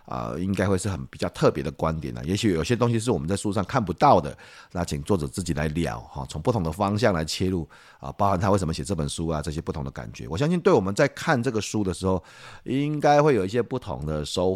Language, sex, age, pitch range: Chinese, male, 30-49, 80-110 Hz